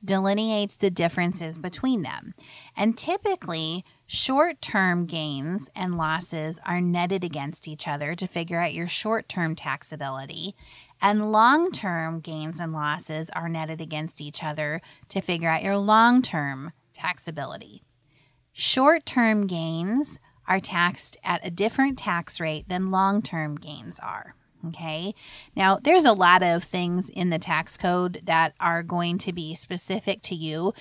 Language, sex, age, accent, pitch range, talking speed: English, female, 30-49, American, 160-200 Hz, 135 wpm